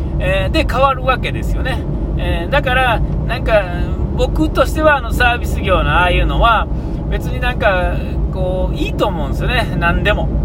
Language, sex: Japanese, male